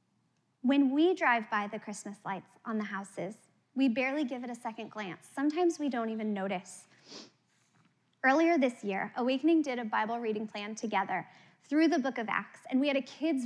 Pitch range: 220-305 Hz